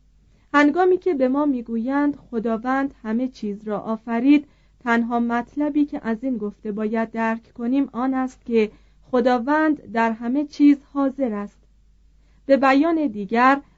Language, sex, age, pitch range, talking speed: Persian, female, 40-59, 220-275 Hz, 135 wpm